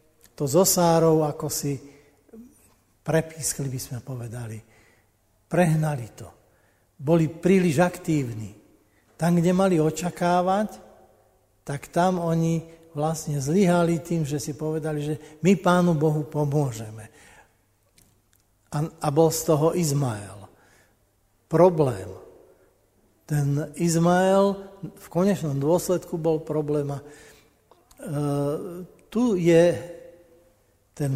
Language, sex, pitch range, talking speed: Slovak, male, 140-175 Hz, 95 wpm